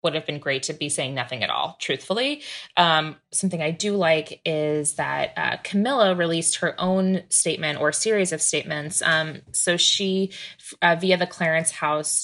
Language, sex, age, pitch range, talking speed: English, female, 20-39, 155-185 Hz, 175 wpm